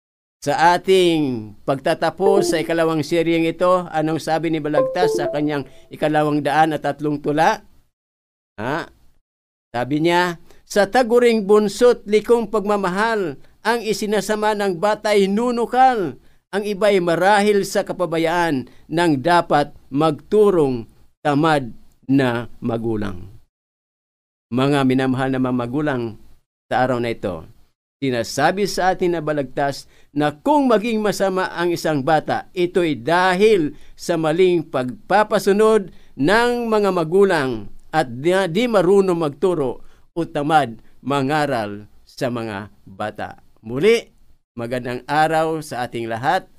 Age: 50-69